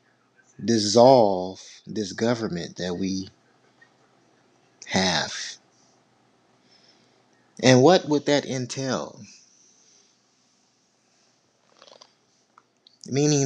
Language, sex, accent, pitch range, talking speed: English, male, American, 115-140 Hz, 55 wpm